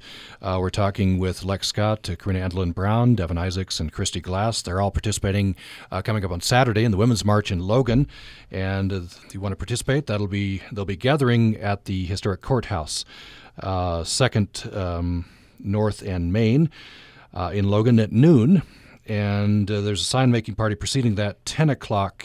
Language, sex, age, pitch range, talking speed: English, male, 40-59, 90-120 Hz, 175 wpm